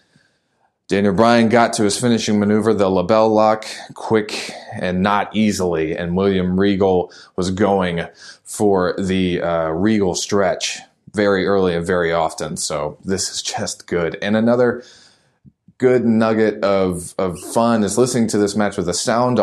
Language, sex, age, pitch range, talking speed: English, male, 20-39, 90-110 Hz, 150 wpm